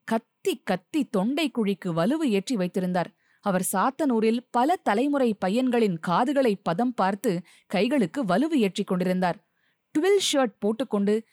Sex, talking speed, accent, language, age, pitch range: female, 110 wpm, native, Tamil, 30-49, 185-260 Hz